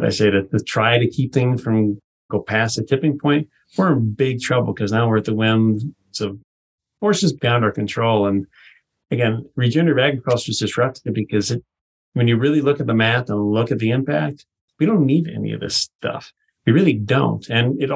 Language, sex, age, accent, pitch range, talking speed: English, male, 40-59, American, 110-140 Hz, 210 wpm